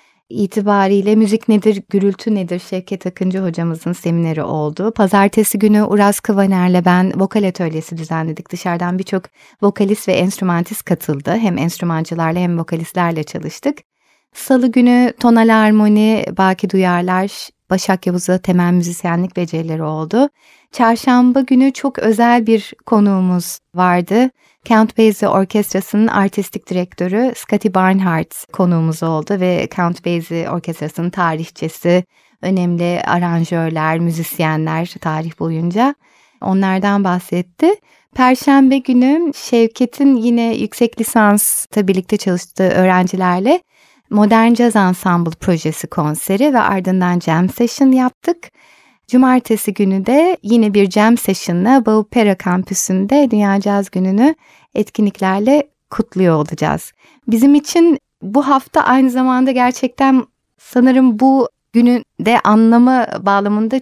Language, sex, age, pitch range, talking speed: Turkish, female, 30-49, 180-240 Hz, 110 wpm